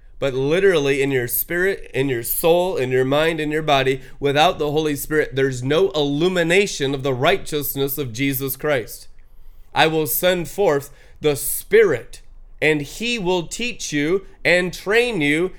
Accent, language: American, English